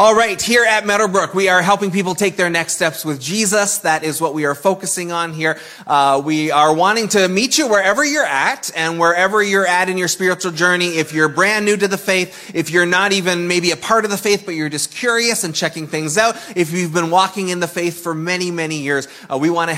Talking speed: 245 wpm